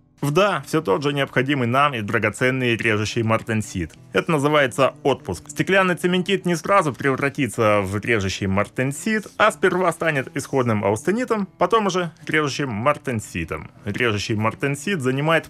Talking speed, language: 130 wpm, Russian